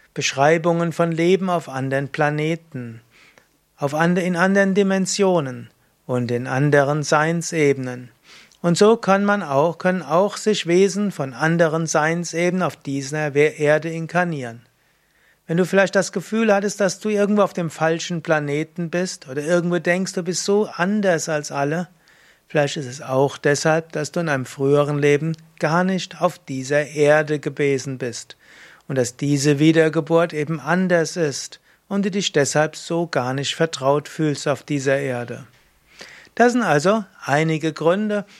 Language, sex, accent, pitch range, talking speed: German, male, German, 145-180 Hz, 140 wpm